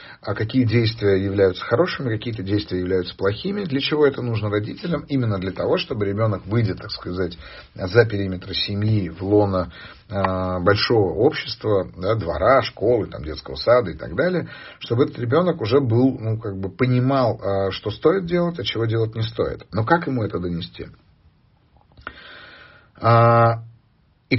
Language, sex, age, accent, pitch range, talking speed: Russian, male, 40-59, native, 100-130 Hz, 155 wpm